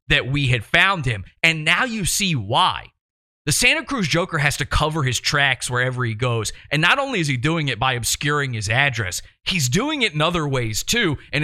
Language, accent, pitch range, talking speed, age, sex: English, American, 110-150 Hz, 215 wpm, 30-49, male